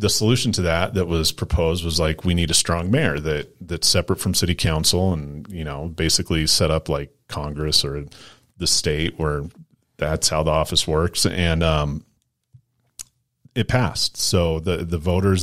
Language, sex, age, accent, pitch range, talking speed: English, male, 40-59, American, 80-95 Hz, 175 wpm